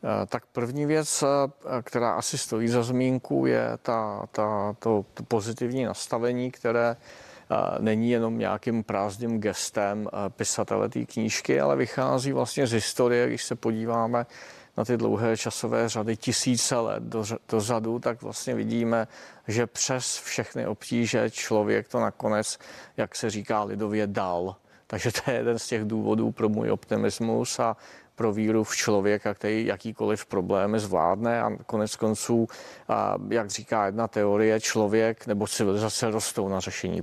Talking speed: 135 wpm